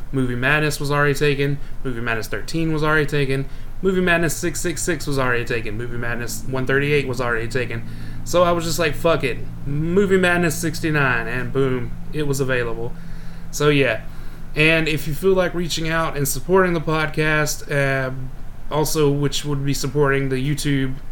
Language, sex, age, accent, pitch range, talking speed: English, male, 20-39, American, 130-150 Hz, 170 wpm